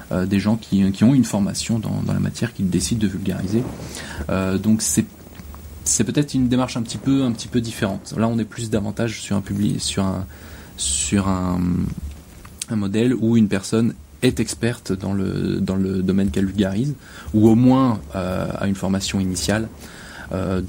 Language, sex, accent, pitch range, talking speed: French, male, French, 90-115 Hz, 190 wpm